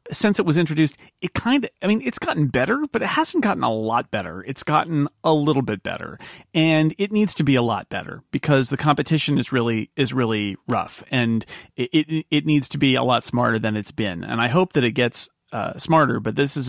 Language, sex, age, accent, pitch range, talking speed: English, male, 40-59, American, 115-145 Hz, 235 wpm